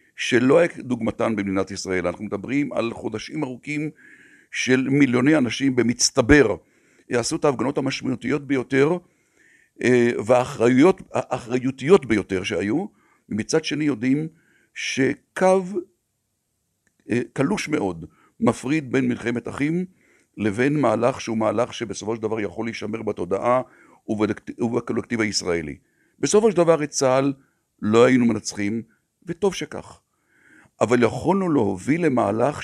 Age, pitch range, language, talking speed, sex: 60-79, 115-150 Hz, Hebrew, 105 wpm, male